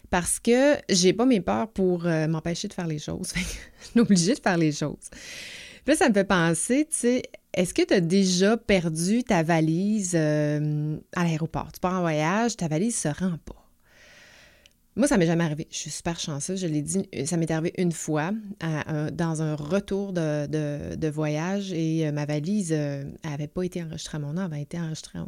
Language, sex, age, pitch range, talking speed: French, female, 30-49, 160-200 Hz, 210 wpm